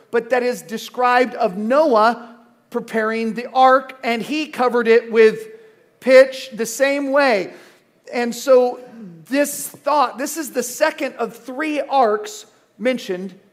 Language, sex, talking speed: English, male, 135 wpm